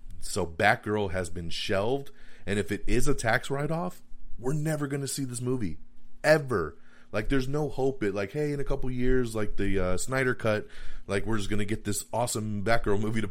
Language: English